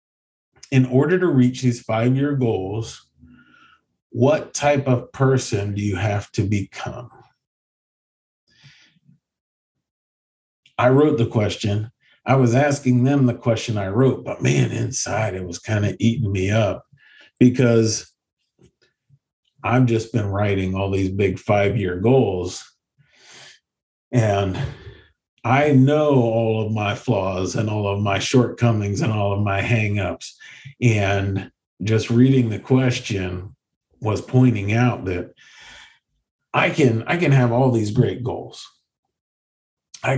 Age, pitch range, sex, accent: 50-69, 100-130 Hz, male, American